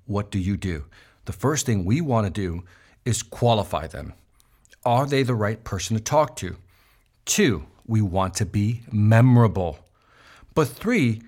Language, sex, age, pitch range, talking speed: English, male, 50-69, 105-145 Hz, 155 wpm